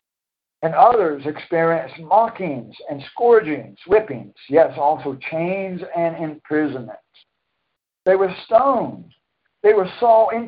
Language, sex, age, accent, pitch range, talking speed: English, male, 60-79, American, 145-220 Hz, 110 wpm